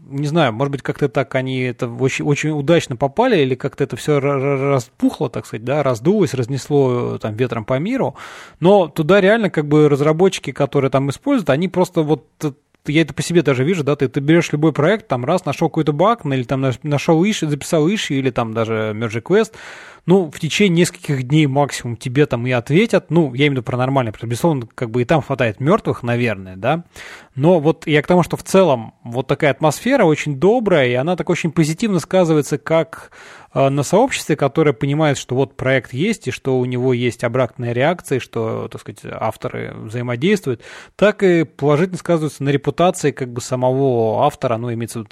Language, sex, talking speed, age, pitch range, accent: Russian, male, 200 wpm, 20-39, 125-165 Hz, native